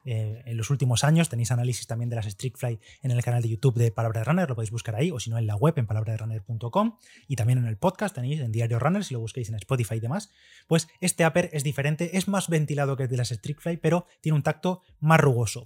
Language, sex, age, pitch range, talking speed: Spanish, male, 20-39, 125-155 Hz, 265 wpm